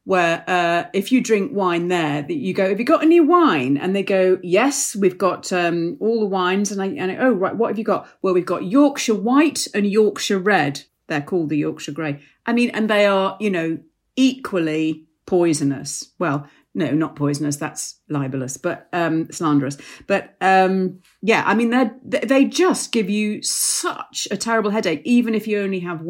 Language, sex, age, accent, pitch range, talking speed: English, female, 40-59, British, 155-215 Hz, 195 wpm